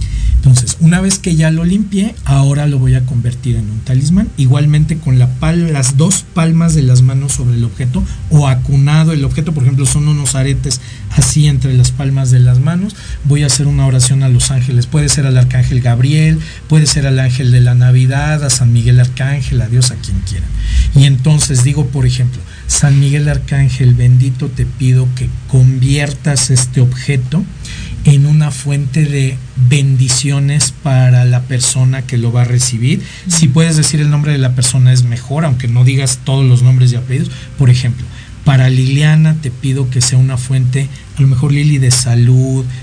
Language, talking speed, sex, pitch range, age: Spanish, 185 wpm, male, 125-140 Hz, 50-69